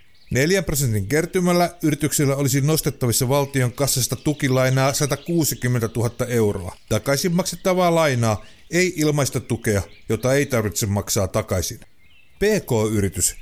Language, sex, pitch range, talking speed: Finnish, male, 115-165 Hz, 105 wpm